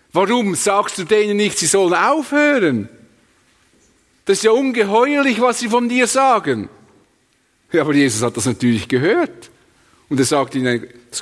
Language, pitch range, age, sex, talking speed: English, 125-205 Hz, 50-69, male, 155 wpm